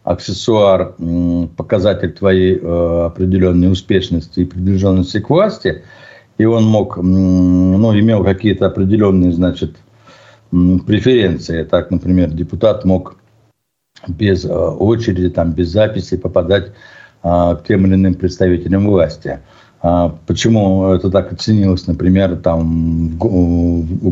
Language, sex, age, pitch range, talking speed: Russian, male, 60-79, 90-105 Hz, 100 wpm